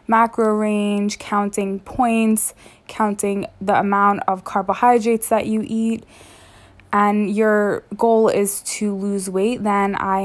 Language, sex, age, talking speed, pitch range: English, female, 20-39, 125 wpm, 195-225 Hz